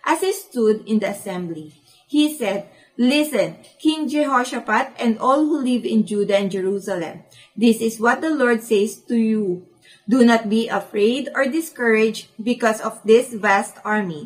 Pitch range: 200-275 Hz